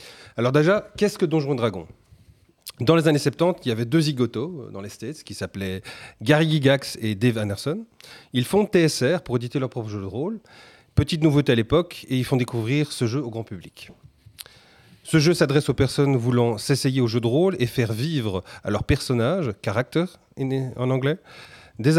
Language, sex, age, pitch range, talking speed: French, male, 30-49, 110-150 Hz, 190 wpm